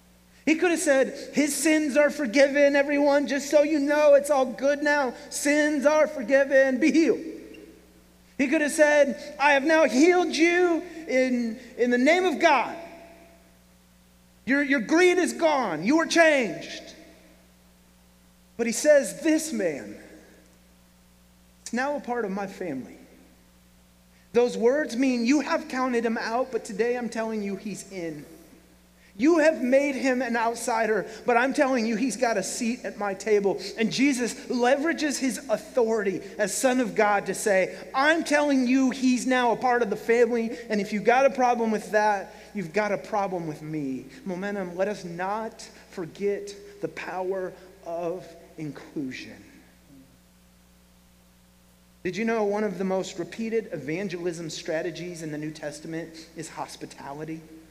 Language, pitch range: English, 165-275 Hz